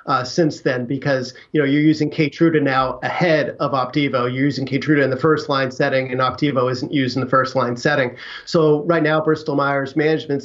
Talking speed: 205 wpm